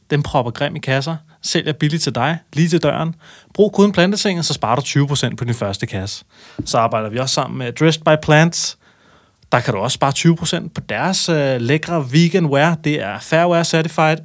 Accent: native